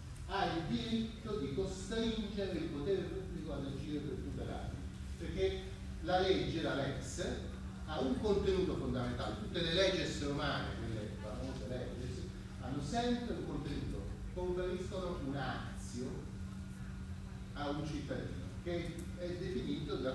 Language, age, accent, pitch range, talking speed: Italian, 40-59, native, 95-155 Hz, 130 wpm